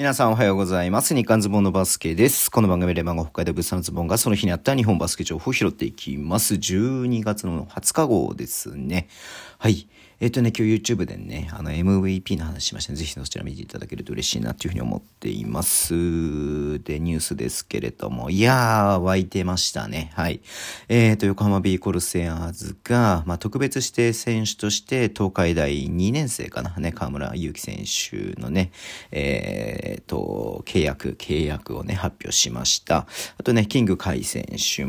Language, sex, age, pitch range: Japanese, male, 40-59, 90-115 Hz